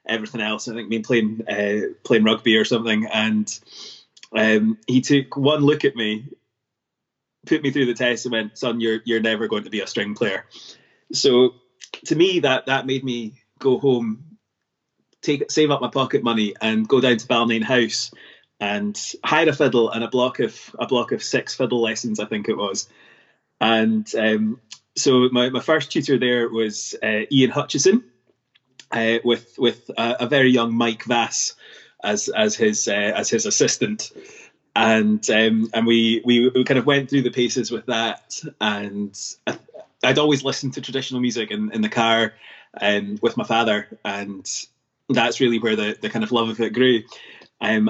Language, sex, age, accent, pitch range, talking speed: English, male, 20-39, British, 110-130 Hz, 185 wpm